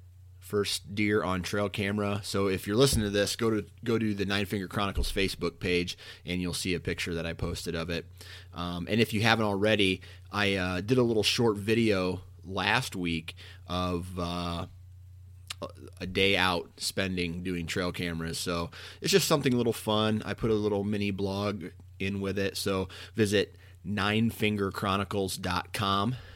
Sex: male